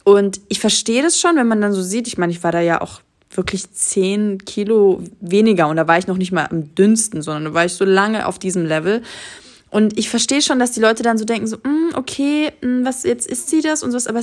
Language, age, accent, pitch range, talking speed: German, 20-39, German, 190-235 Hz, 250 wpm